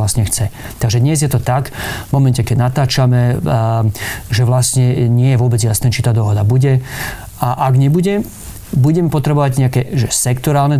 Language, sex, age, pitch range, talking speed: Slovak, male, 30-49, 115-130 Hz, 160 wpm